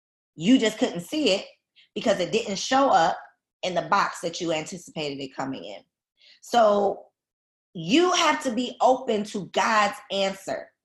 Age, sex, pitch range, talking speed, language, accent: 20-39, female, 175-225 Hz, 155 wpm, English, American